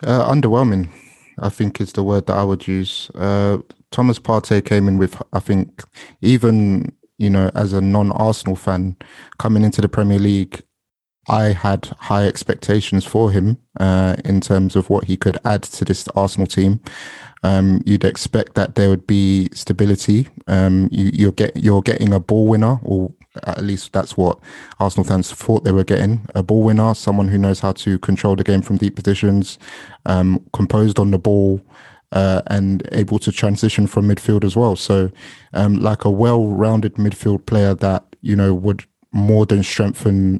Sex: male